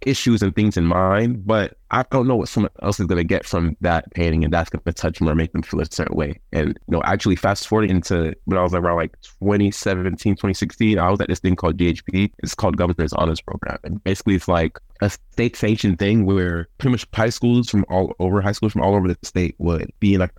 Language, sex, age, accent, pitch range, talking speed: English, male, 20-39, American, 85-100 Hz, 245 wpm